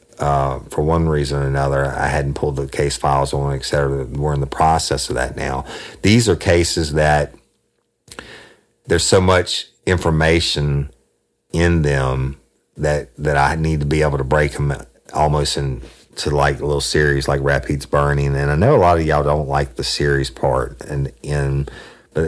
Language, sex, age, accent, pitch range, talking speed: English, male, 50-69, American, 70-85 Hz, 175 wpm